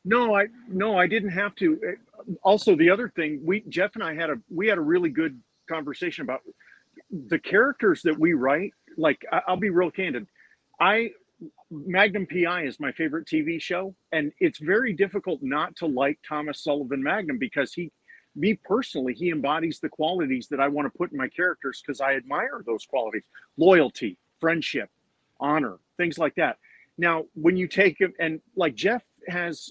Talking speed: 180 wpm